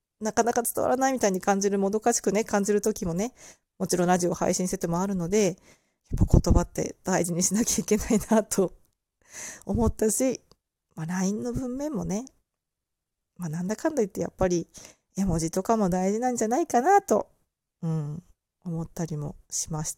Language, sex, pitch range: Japanese, female, 170-220 Hz